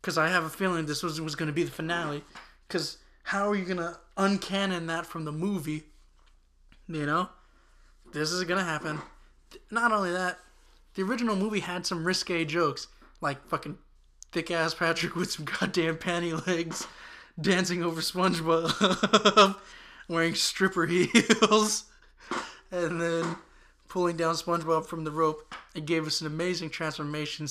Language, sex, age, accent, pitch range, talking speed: English, male, 20-39, American, 155-185 Hz, 155 wpm